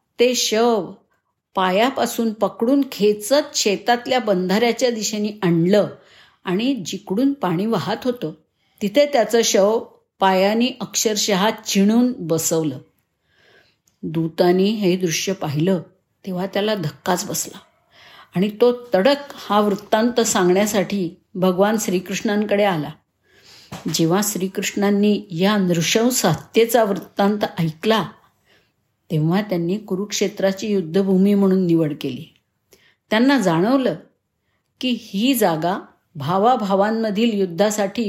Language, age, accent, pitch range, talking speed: Marathi, 50-69, native, 180-220 Hz, 90 wpm